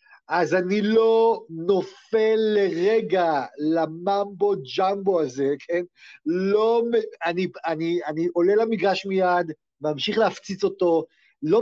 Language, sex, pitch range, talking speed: Hebrew, male, 175-235 Hz, 100 wpm